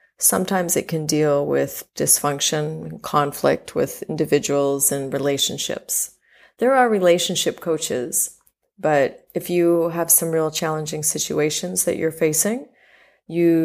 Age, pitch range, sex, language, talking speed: 30-49, 150-175 Hz, female, English, 125 wpm